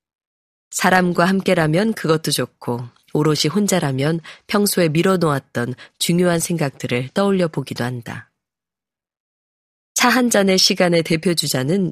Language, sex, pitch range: Korean, female, 140-185 Hz